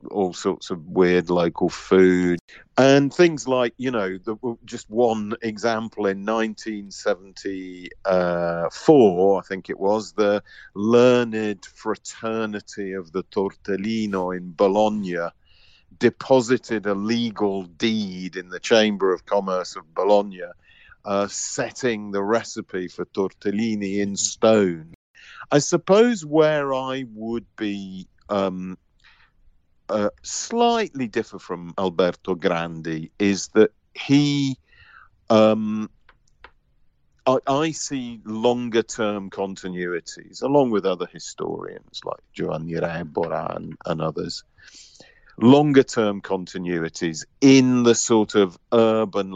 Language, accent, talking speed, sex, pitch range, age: English, British, 110 wpm, male, 95-115 Hz, 50-69